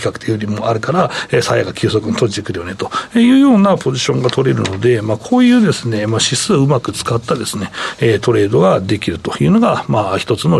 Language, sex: Japanese, male